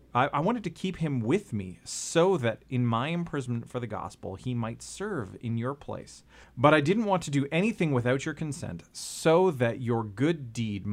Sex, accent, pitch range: male, American, 105-145 Hz